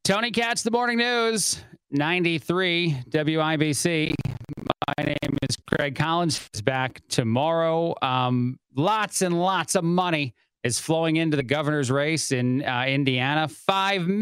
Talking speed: 130 wpm